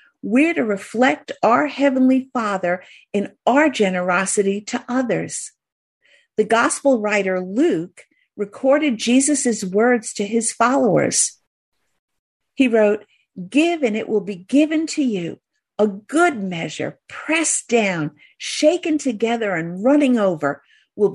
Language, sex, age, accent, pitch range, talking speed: English, female, 50-69, American, 205-275 Hz, 120 wpm